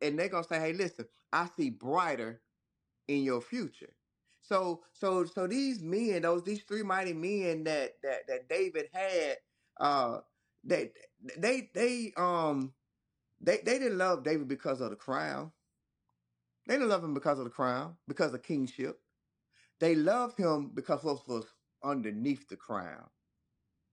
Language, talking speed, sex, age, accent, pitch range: English, 155 wpm, male, 30-49, American, 130-200 Hz